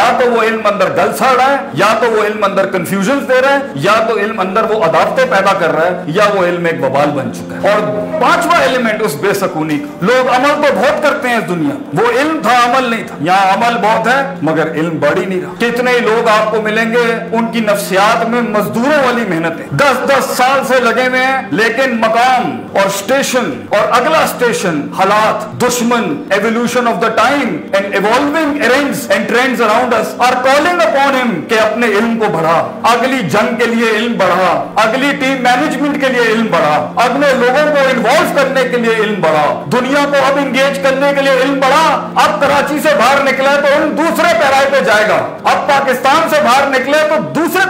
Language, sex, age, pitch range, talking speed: Urdu, male, 50-69, 210-275 Hz, 125 wpm